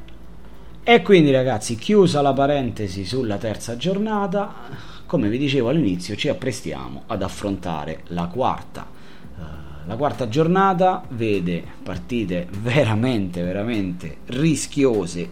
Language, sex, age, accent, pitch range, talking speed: Italian, male, 30-49, native, 80-105 Hz, 105 wpm